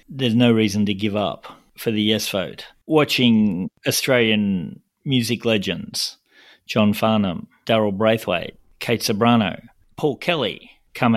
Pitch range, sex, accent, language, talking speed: 105-125 Hz, male, Australian, English, 125 wpm